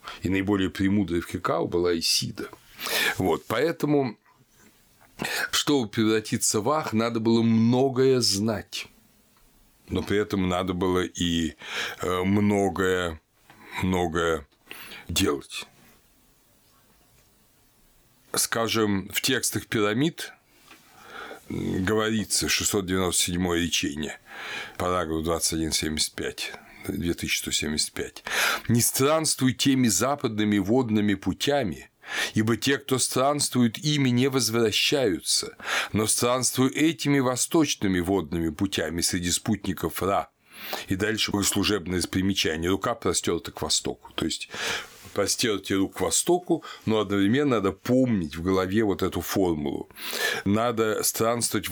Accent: native